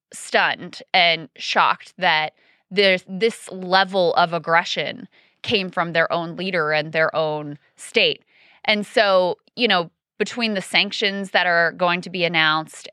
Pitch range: 160-190 Hz